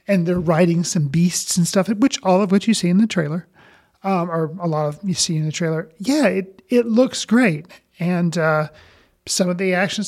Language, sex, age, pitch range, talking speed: English, male, 40-59, 165-200 Hz, 220 wpm